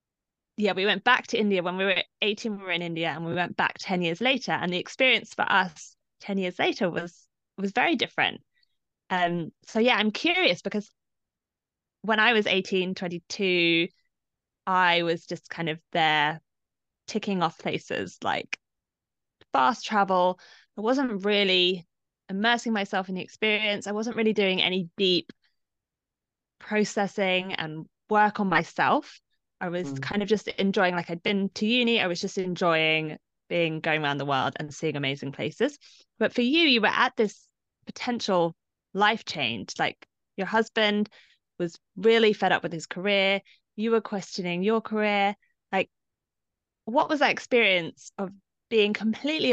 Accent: British